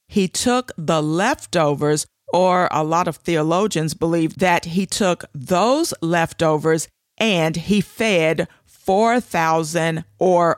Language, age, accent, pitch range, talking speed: English, 50-69, American, 155-195 Hz, 115 wpm